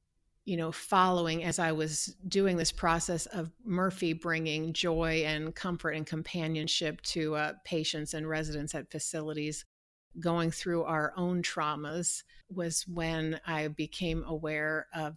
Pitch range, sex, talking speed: 155-180 Hz, female, 140 wpm